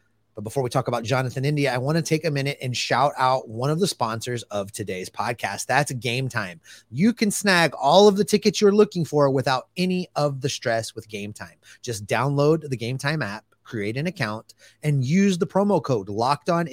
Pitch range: 125-160 Hz